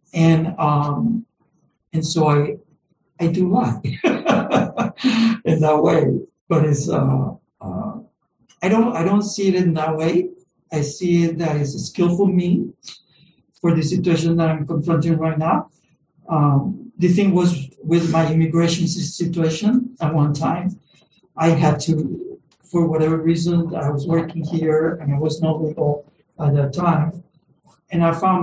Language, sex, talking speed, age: English, male, 155 wpm, 60-79